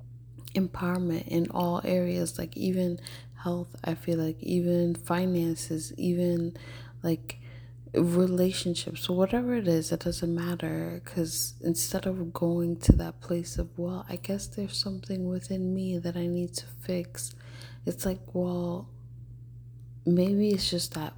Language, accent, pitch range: English, American, 120-175 Hz